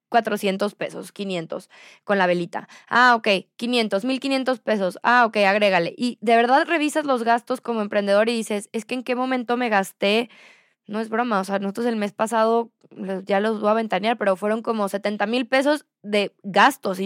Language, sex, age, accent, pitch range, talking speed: Spanish, female, 20-39, Mexican, 200-250 Hz, 190 wpm